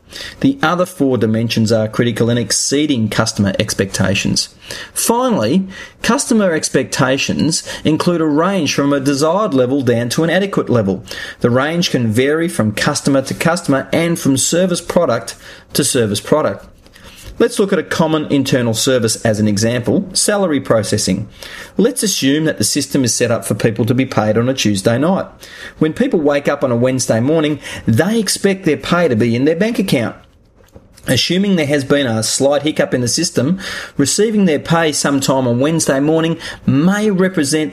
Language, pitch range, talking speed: English, 115-150 Hz, 170 wpm